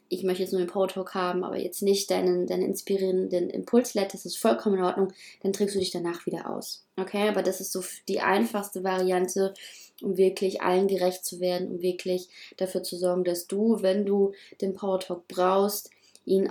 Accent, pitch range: German, 180-195 Hz